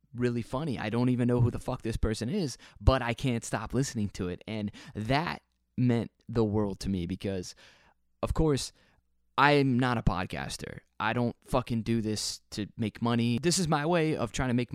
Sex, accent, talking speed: male, American, 200 wpm